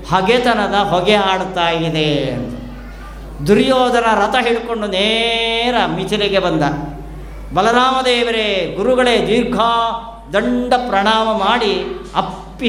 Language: Kannada